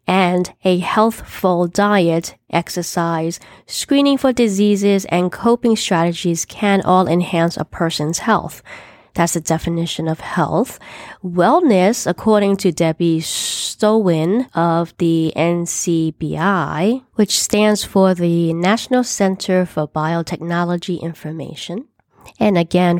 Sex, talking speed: female, 105 wpm